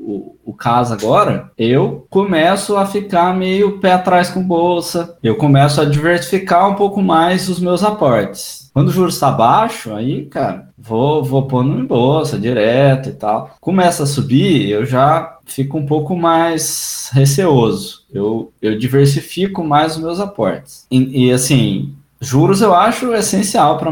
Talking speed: 160 wpm